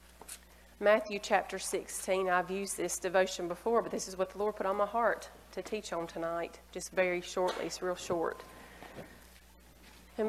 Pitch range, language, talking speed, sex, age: 175-210 Hz, English, 170 wpm, female, 30-49